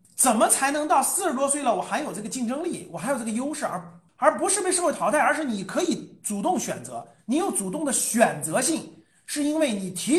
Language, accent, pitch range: Chinese, native, 215-330 Hz